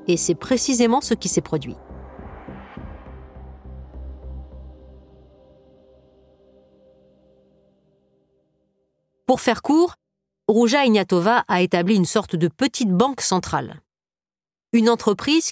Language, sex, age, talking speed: French, female, 40-59, 85 wpm